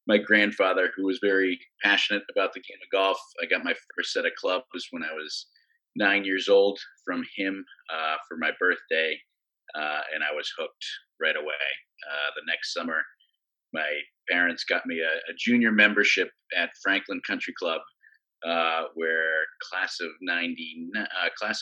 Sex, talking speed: male, 165 wpm